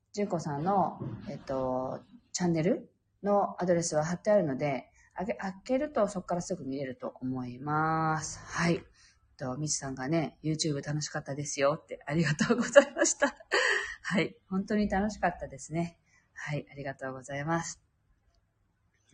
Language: Japanese